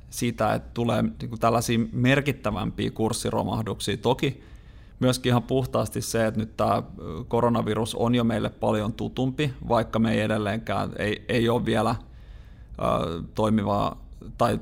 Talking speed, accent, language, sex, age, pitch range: 125 wpm, native, Finnish, male, 30-49, 110-120 Hz